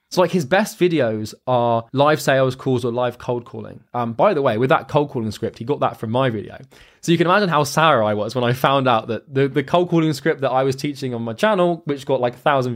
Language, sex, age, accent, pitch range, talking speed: English, male, 20-39, British, 115-145 Hz, 275 wpm